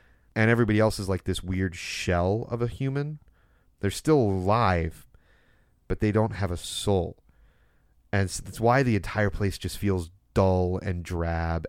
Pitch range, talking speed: 85-105 Hz, 160 wpm